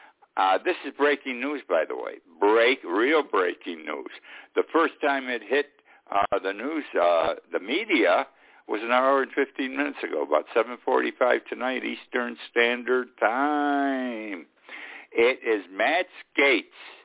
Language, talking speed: English, 140 wpm